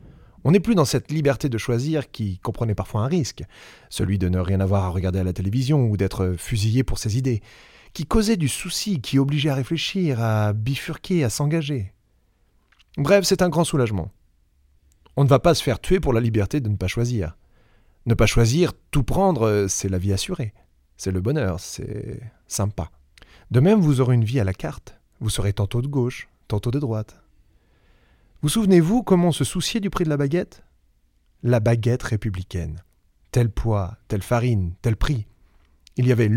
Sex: male